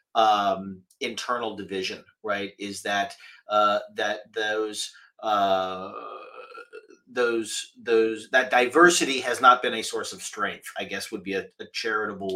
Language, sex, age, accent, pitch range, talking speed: English, male, 30-49, American, 105-135 Hz, 135 wpm